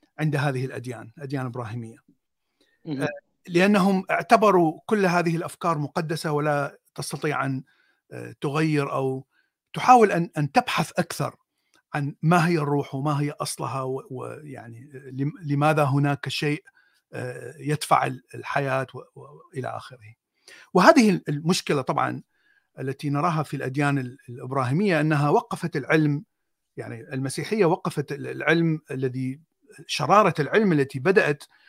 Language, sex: Arabic, male